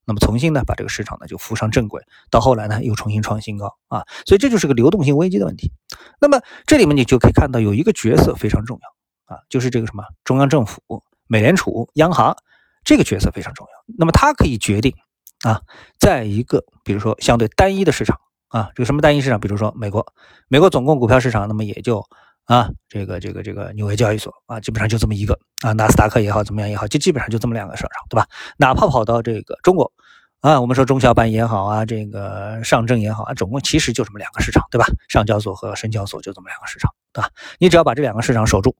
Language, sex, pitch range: Chinese, male, 105-130 Hz